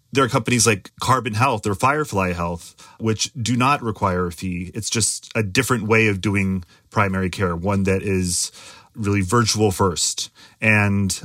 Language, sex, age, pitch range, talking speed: English, male, 30-49, 95-115 Hz, 165 wpm